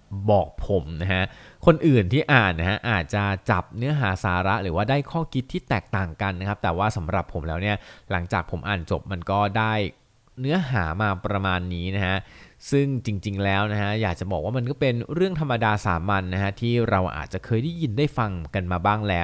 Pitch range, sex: 95-120 Hz, male